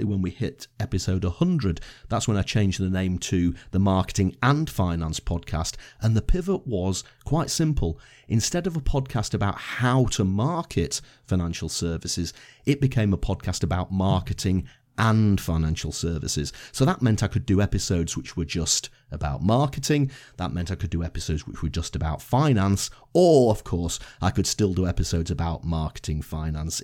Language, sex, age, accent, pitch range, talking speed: English, male, 40-59, British, 95-125 Hz, 170 wpm